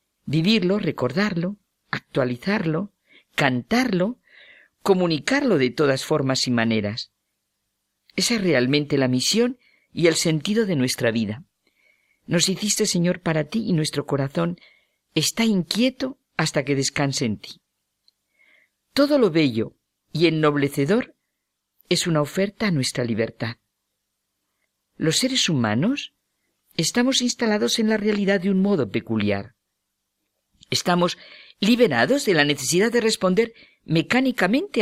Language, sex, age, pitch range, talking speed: Spanish, female, 50-69, 125-210 Hz, 115 wpm